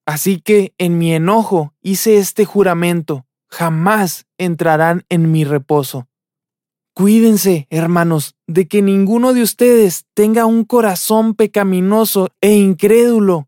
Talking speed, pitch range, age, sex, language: 115 wpm, 170-215 Hz, 20-39, male, Spanish